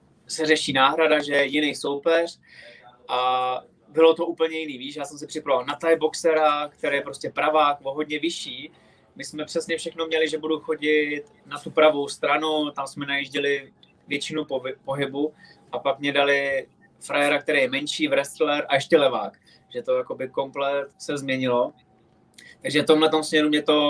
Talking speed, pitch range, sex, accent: 170 wpm, 140-160 Hz, male, native